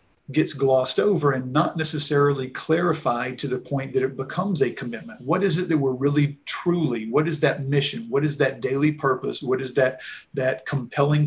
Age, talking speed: 40-59, 190 wpm